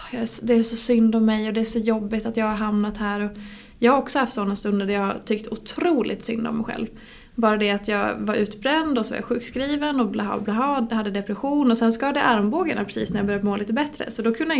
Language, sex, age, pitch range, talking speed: English, female, 20-39, 210-245 Hz, 245 wpm